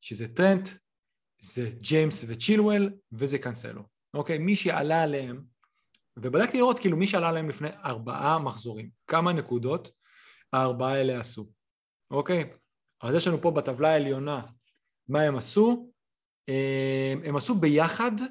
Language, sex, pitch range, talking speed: Hebrew, male, 125-170 Hz, 130 wpm